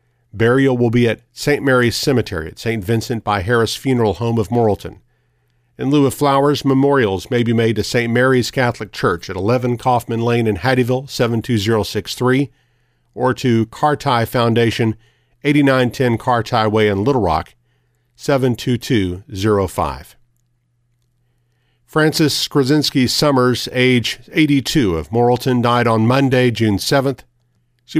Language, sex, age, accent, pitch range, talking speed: English, male, 50-69, American, 110-130 Hz, 130 wpm